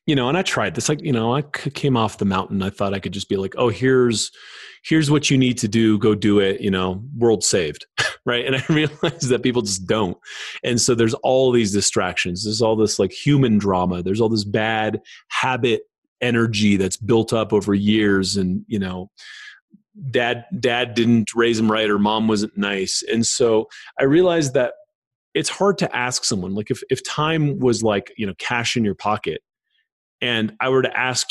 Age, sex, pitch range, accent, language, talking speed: 30-49, male, 100-130 Hz, American, English, 205 wpm